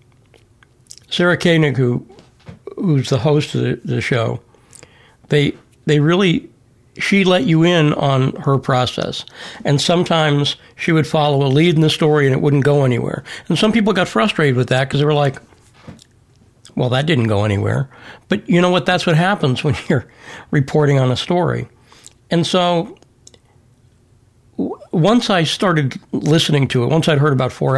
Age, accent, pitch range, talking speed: 60-79, American, 125-155 Hz, 165 wpm